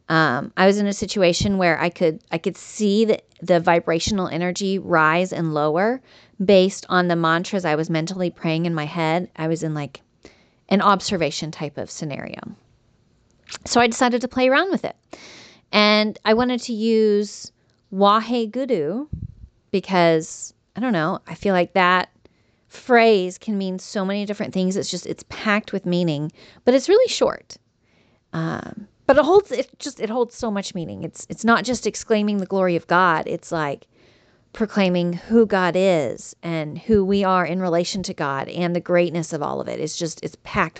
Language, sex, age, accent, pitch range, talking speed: English, female, 30-49, American, 170-210 Hz, 175 wpm